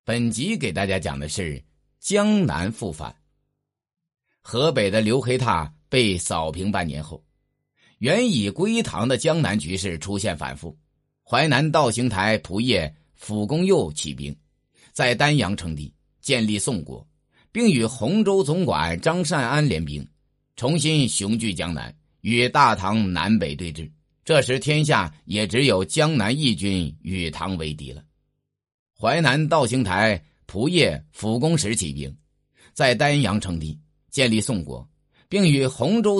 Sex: male